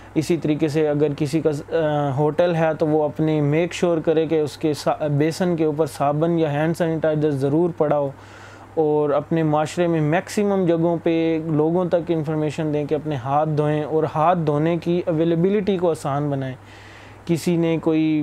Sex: male